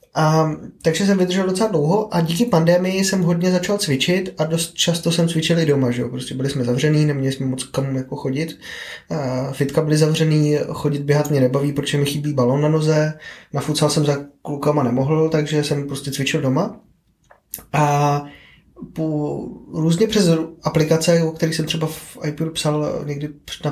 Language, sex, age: Czech, male, 20-39